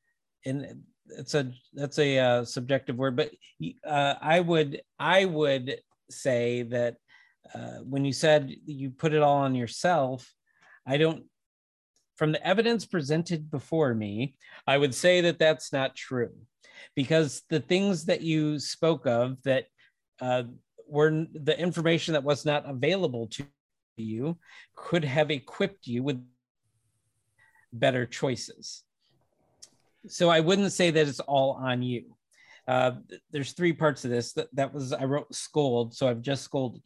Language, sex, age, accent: English, male, 50-69, American